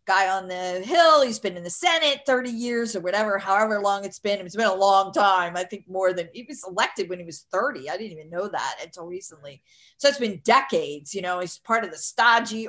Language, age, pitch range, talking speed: English, 40-59, 195-270 Hz, 240 wpm